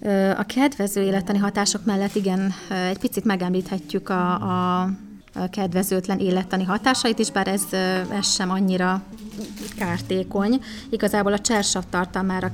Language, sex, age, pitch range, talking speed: Hungarian, female, 20-39, 185-200 Hz, 120 wpm